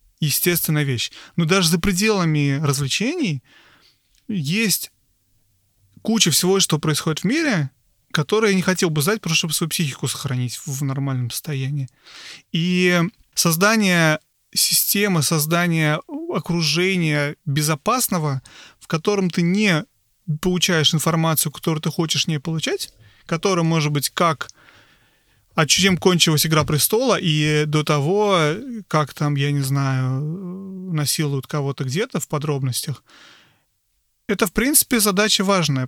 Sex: male